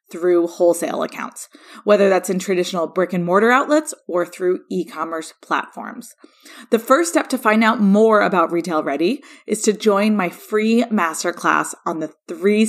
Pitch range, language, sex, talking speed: 175-245 Hz, English, female, 160 wpm